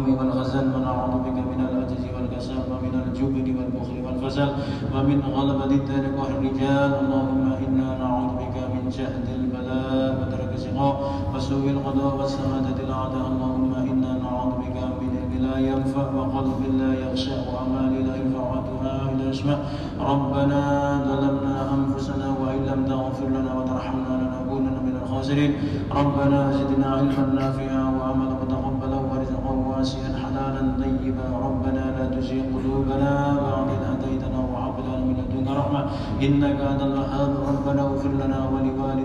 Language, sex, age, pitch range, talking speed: Indonesian, male, 20-39, 130-135 Hz, 50 wpm